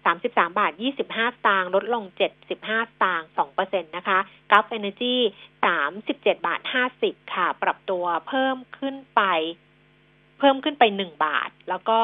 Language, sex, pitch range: Thai, female, 190-255 Hz